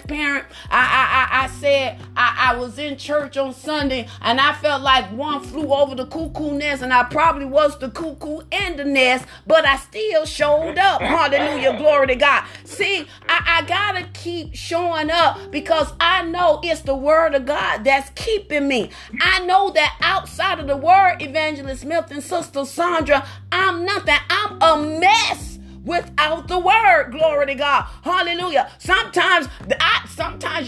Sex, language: female, English